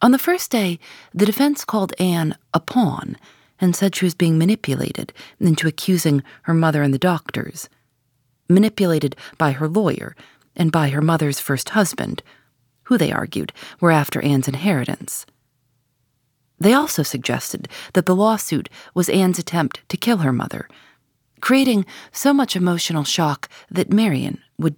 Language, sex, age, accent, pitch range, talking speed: English, female, 40-59, American, 135-195 Hz, 150 wpm